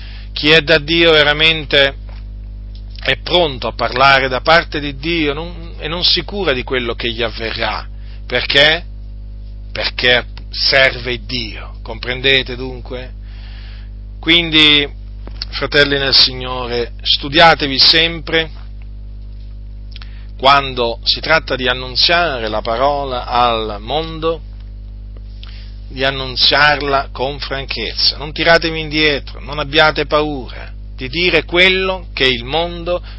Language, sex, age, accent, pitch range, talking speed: Italian, male, 40-59, native, 100-150 Hz, 105 wpm